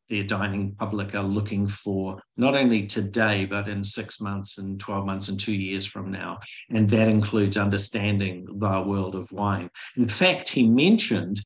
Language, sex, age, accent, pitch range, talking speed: English, male, 50-69, Australian, 100-115 Hz, 175 wpm